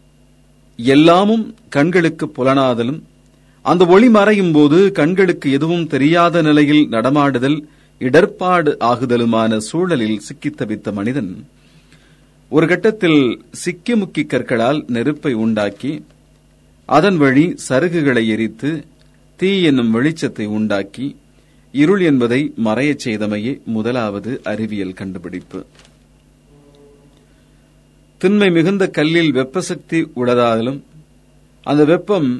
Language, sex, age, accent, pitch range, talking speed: Tamil, male, 40-59, native, 110-155 Hz, 80 wpm